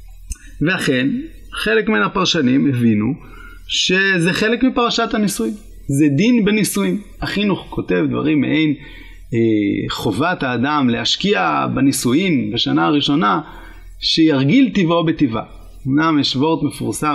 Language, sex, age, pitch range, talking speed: Hebrew, male, 30-49, 135-215 Hz, 105 wpm